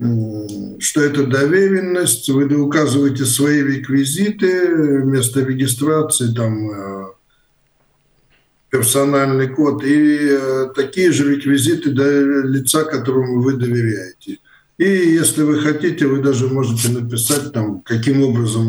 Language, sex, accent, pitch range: Russian, male, native, 120-150 Hz